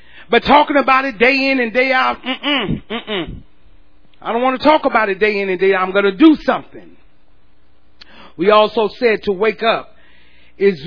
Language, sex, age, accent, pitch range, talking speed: English, male, 40-59, American, 175-265 Hz, 205 wpm